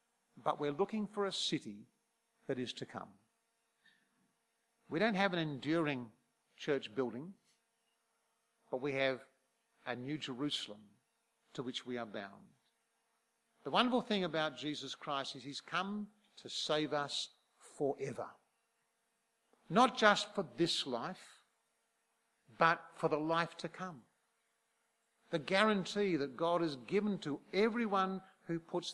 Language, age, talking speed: English, 50-69, 130 wpm